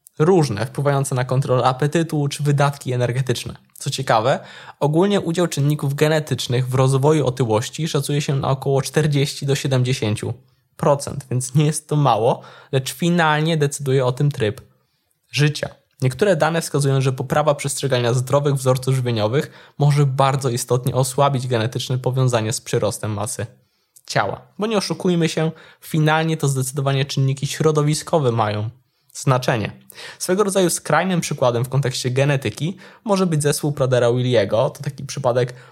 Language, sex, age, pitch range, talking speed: Polish, male, 20-39, 125-150 Hz, 135 wpm